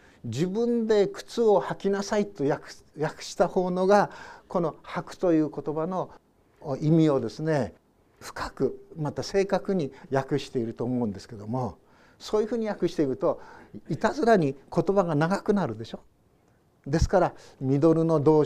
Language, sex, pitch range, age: Japanese, male, 125-180 Hz, 60-79